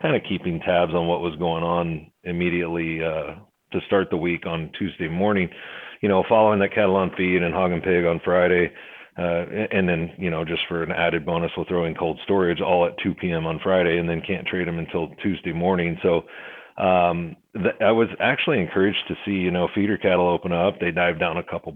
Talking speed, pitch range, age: 225 wpm, 85-100 Hz, 40-59